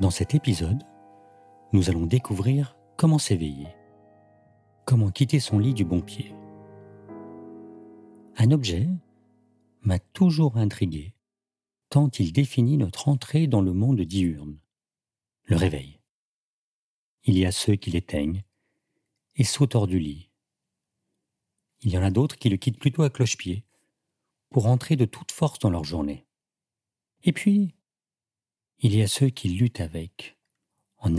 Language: French